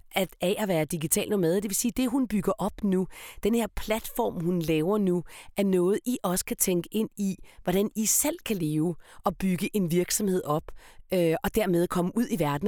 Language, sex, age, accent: Danish, female, 30-49, native